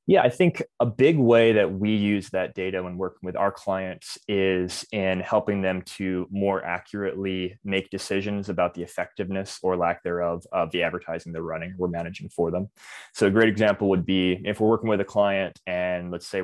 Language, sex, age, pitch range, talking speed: English, male, 20-39, 85-95 Hz, 200 wpm